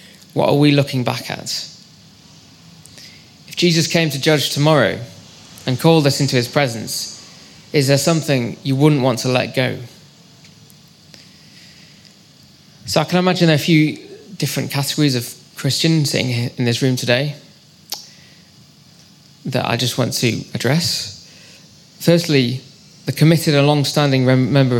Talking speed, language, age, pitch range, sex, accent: 130 wpm, English, 20-39, 125-155 Hz, male, British